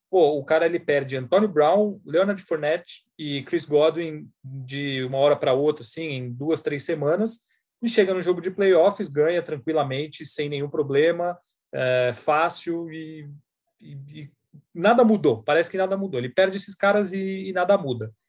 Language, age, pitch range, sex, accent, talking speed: Portuguese, 30-49, 140-175 Hz, male, Brazilian, 170 wpm